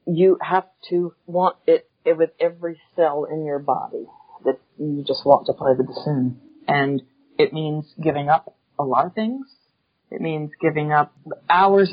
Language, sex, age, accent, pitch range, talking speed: English, female, 40-59, American, 145-180 Hz, 170 wpm